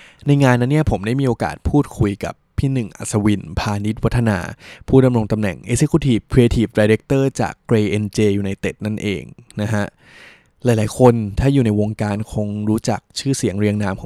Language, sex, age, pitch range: Thai, male, 20-39, 105-125 Hz